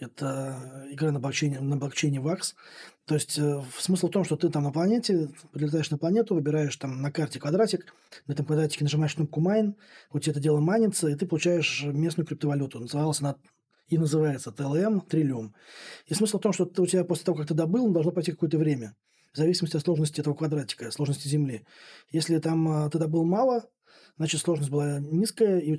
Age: 20-39